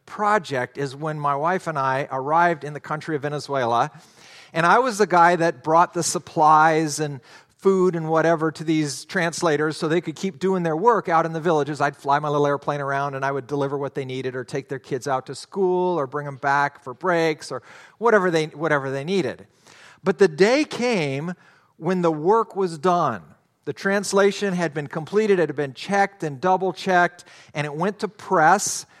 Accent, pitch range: American, 140-180 Hz